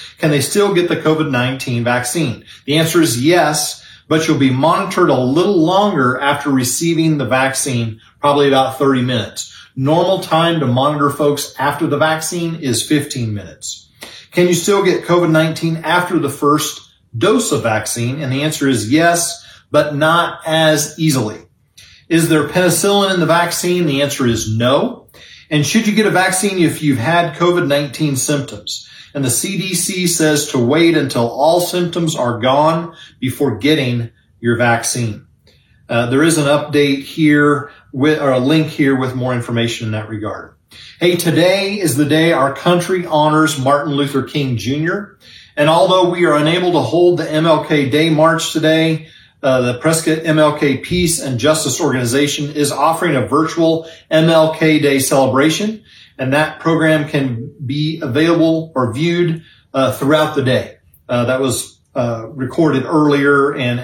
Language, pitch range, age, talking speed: English, 130-160 Hz, 40-59, 155 wpm